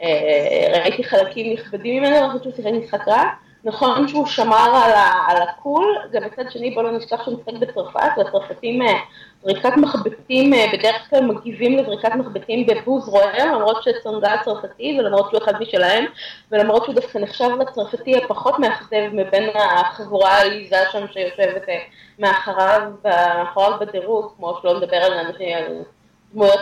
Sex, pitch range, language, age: female, 200-260 Hz, Hebrew, 20-39